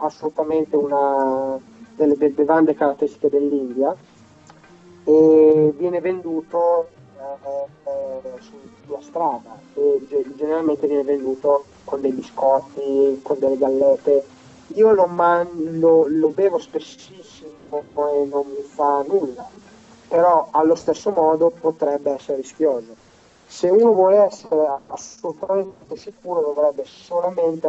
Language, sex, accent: Italian, male, native